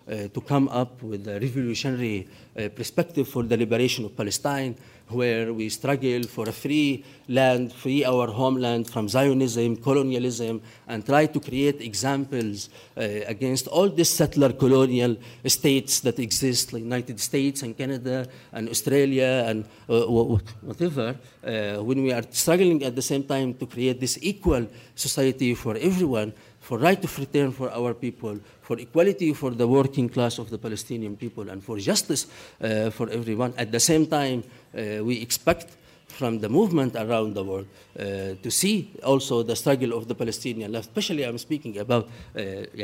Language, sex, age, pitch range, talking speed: German, male, 50-69, 115-140 Hz, 165 wpm